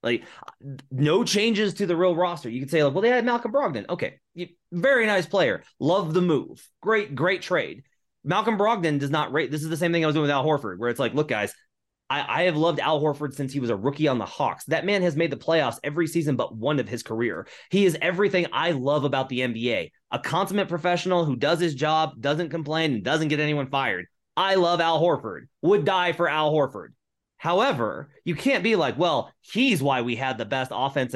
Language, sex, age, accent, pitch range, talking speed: English, male, 30-49, American, 135-180 Hz, 225 wpm